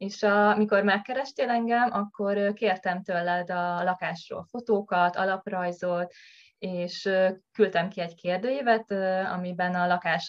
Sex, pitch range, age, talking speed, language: female, 175-200 Hz, 20-39, 110 wpm, Hungarian